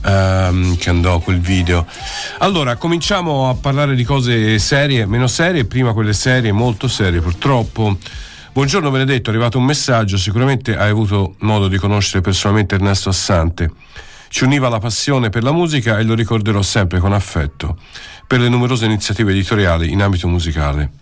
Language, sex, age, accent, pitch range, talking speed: Italian, male, 50-69, native, 90-120 Hz, 155 wpm